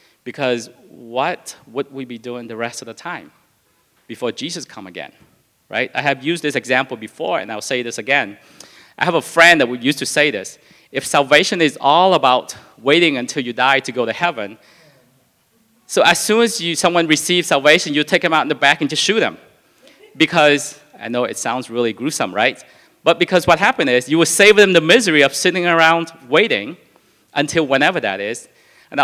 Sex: male